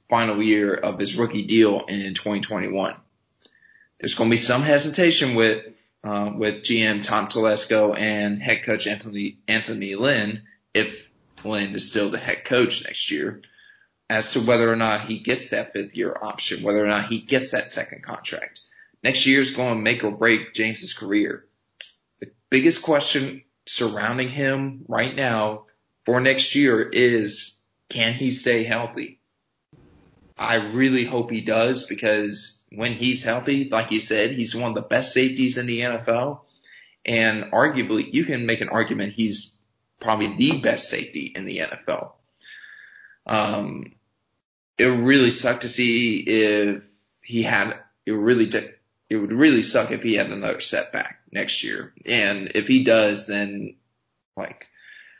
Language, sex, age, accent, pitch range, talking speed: English, male, 20-39, American, 105-120 Hz, 160 wpm